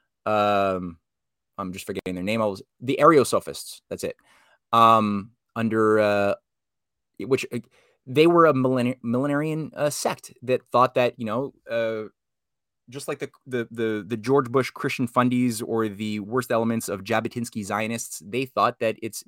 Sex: male